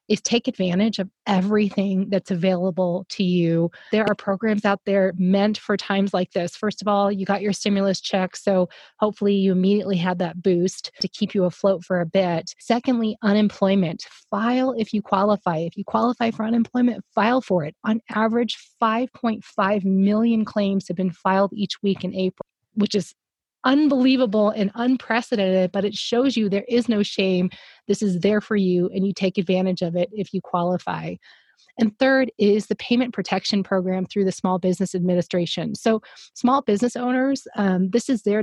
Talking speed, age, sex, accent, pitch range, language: 180 wpm, 30-49, female, American, 190-230 Hz, English